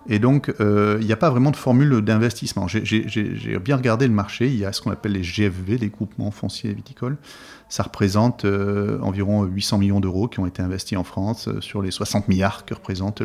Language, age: French, 40-59